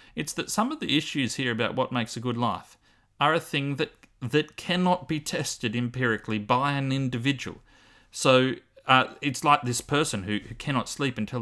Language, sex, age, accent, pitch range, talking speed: English, male, 30-49, Australian, 110-135 Hz, 190 wpm